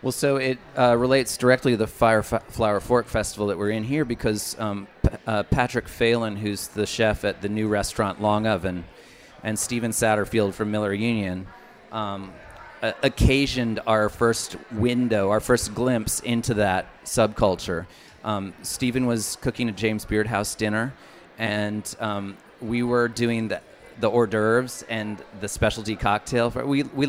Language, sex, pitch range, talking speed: English, male, 105-120 Hz, 165 wpm